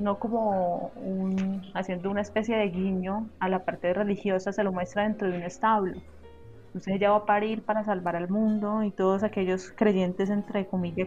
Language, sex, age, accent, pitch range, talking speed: Spanish, female, 20-39, Colombian, 180-210 Hz, 185 wpm